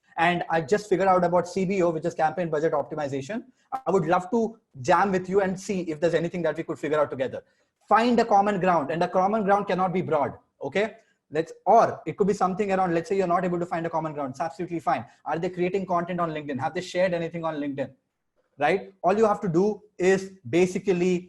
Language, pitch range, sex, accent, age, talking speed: English, 165-195 Hz, male, Indian, 20-39, 230 wpm